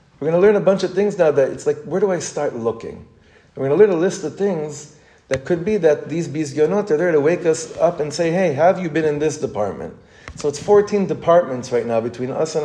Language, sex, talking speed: English, male, 260 wpm